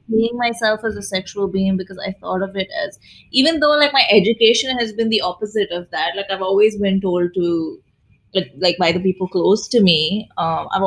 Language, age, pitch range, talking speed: English, 20-39, 180-220 Hz, 215 wpm